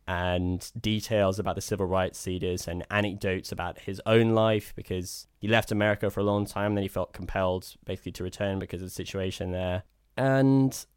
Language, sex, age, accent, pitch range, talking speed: English, male, 10-29, British, 95-110 Hz, 185 wpm